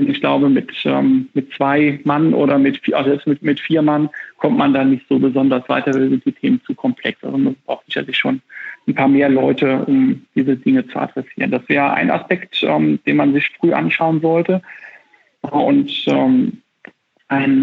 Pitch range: 140-185 Hz